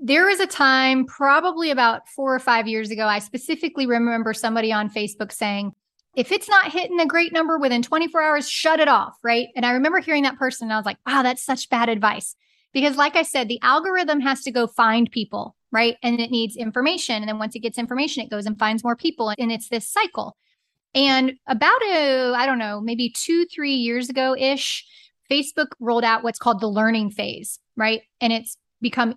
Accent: American